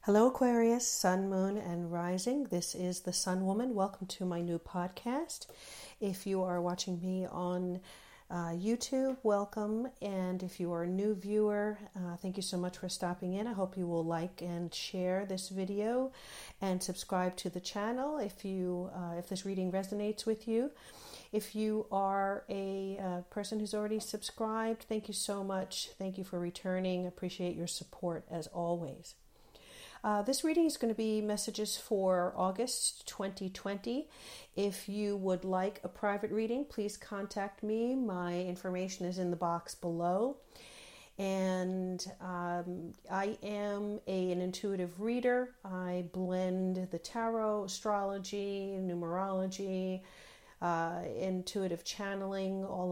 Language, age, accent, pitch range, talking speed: English, 50-69, American, 180-210 Hz, 145 wpm